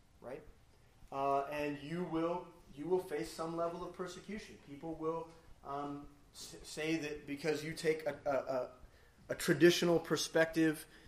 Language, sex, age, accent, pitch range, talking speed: English, male, 30-49, American, 145-180 Hz, 145 wpm